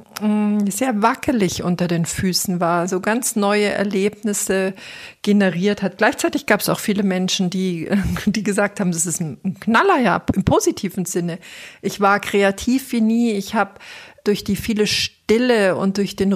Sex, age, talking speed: female, 50-69, 160 wpm